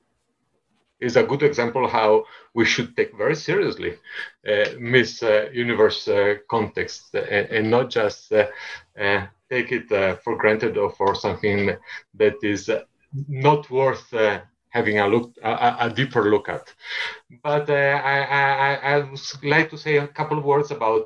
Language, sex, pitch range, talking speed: English, male, 115-150 Hz, 165 wpm